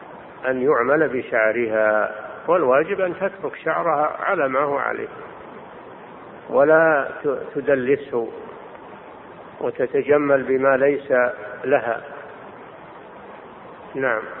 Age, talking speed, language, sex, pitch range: 50-69, 75 wpm, Arabic, male, 135-195 Hz